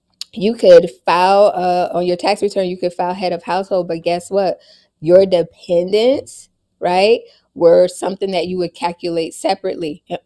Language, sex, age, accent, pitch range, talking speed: English, female, 20-39, American, 175-210 Hz, 165 wpm